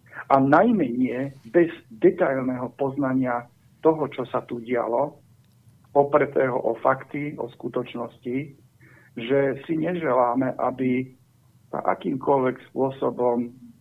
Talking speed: 95 wpm